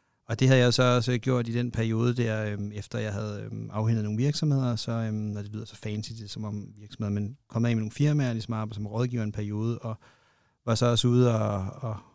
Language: Danish